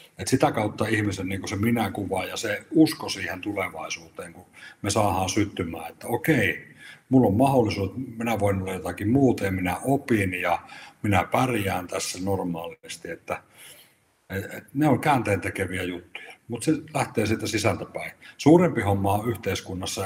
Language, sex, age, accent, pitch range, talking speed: Finnish, male, 60-79, native, 95-115 Hz, 155 wpm